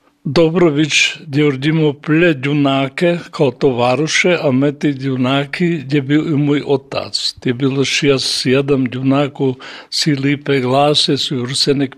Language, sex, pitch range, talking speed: Croatian, male, 135-155 Hz, 125 wpm